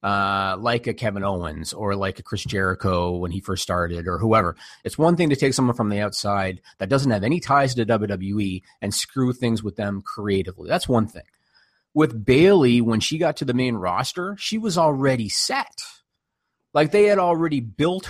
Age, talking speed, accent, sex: 30-49, 195 wpm, American, male